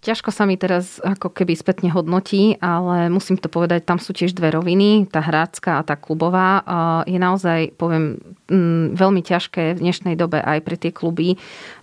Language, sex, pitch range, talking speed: Slovak, female, 165-180 Hz, 170 wpm